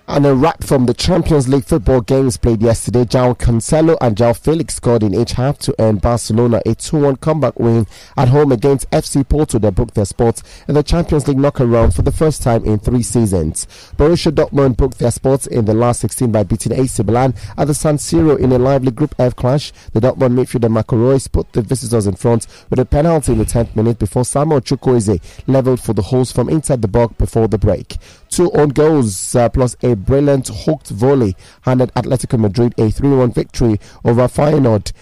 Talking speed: 205 wpm